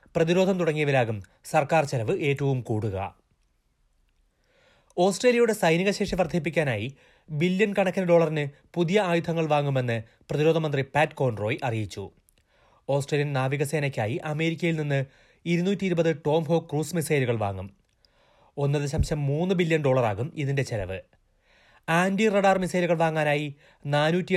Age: 30-49